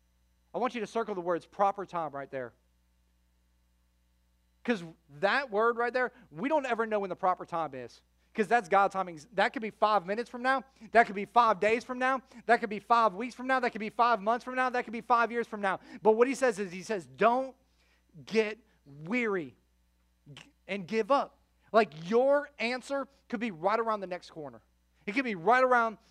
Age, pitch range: 30-49, 160-235 Hz